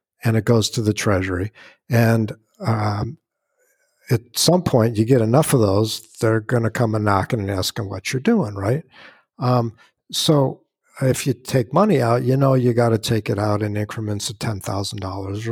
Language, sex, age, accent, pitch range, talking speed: English, male, 50-69, American, 105-130 Hz, 180 wpm